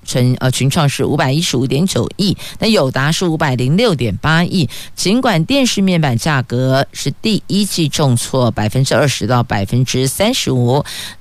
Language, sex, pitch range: Chinese, female, 125-170 Hz